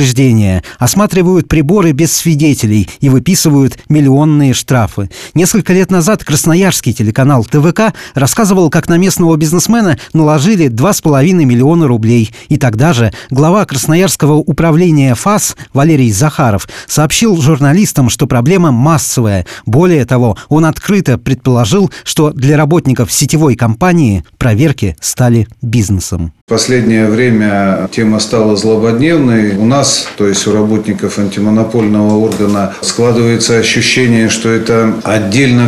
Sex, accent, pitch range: male, native, 110-145 Hz